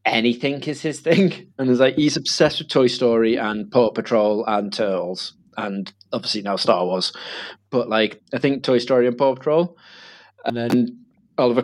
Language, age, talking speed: English, 20-39, 175 wpm